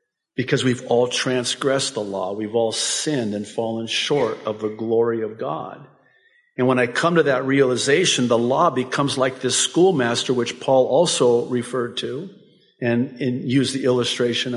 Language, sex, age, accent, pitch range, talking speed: English, male, 50-69, American, 110-135 Hz, 160 wpm